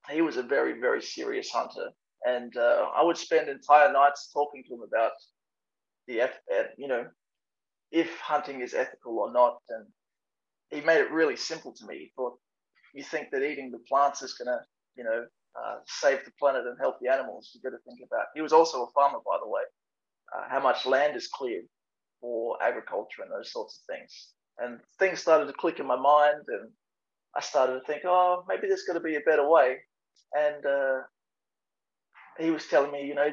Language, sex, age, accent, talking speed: English, male, 20-39, Australian, 200 wpm